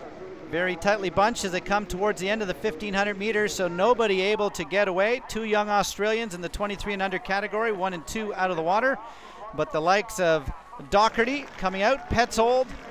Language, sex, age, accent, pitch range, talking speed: English, male, 40-59, American, 185-220 Hz, 205 wpm